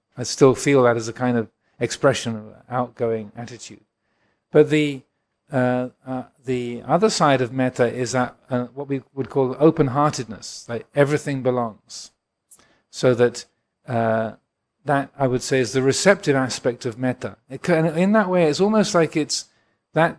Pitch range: 120-145 Hz